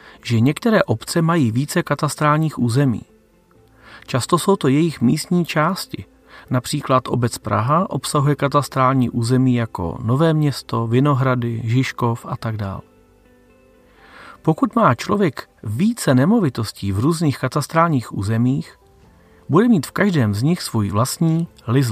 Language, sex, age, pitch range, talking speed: Czech, male, 40-59, 115-150 Hz, 120 wpm